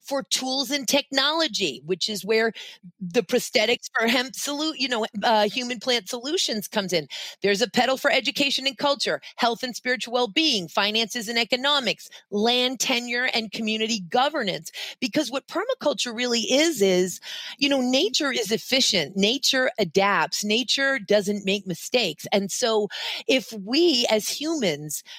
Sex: female